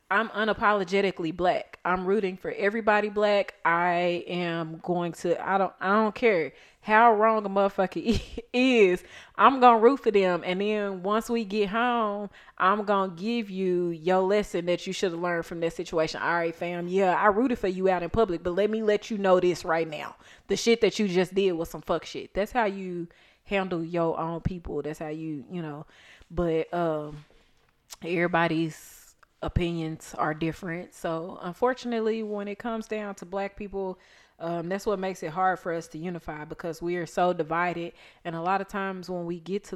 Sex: female